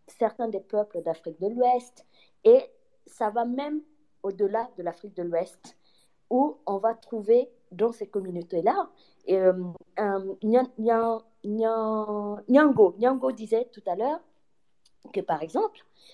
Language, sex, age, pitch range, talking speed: French, female, 20-39, 180-250 Hz, 135 wpm